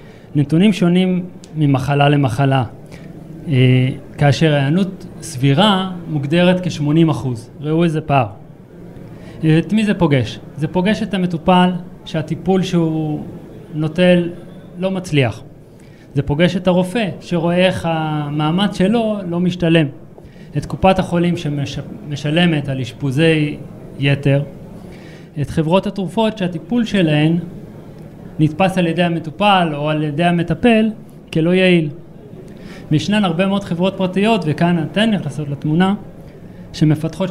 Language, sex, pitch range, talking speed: Hebrew, male, 145-180 Hz, 110 wpm